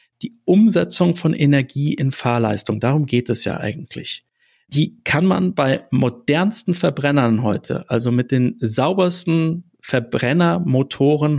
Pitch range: 120-165 Hz